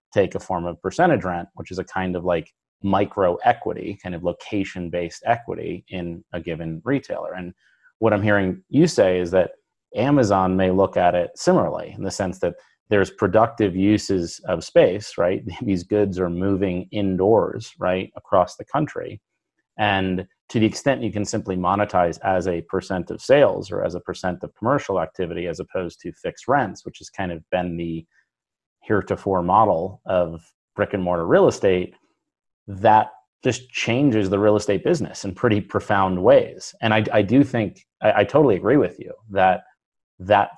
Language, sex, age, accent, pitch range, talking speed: English, male, 30-49, American, 90-105 Hz, 175 wpm